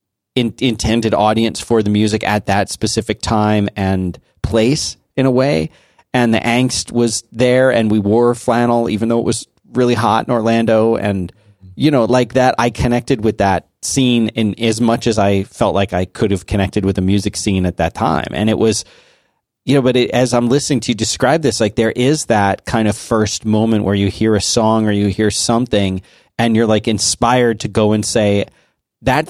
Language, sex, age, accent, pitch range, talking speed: English, male, 30-49, American, 105-125 Hz, 205 wpm